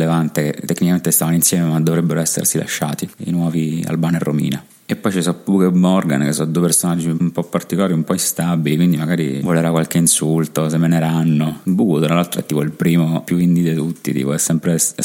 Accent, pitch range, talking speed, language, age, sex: native, 80-85 Hz, 215 wpm, Italian, 30-49, male